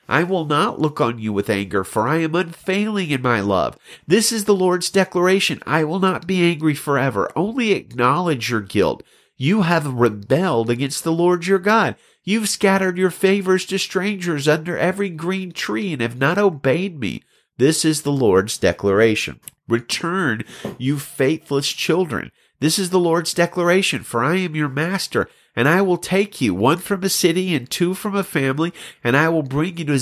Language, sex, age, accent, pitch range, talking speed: English, male, 50-69, American, 130-185 Hz, 185 wpm